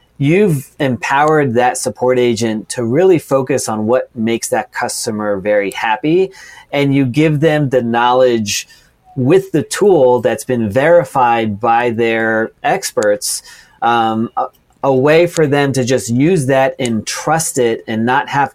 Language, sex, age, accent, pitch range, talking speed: English, male, 30-49, American, 110-130 Hz, 150 wpm